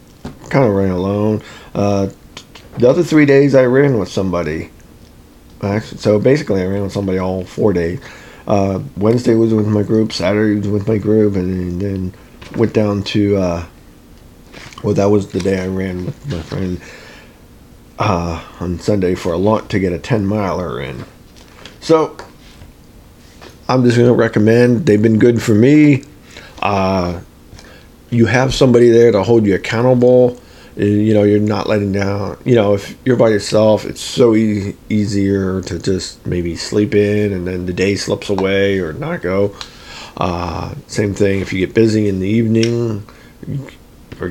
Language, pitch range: English, 95-115 Hz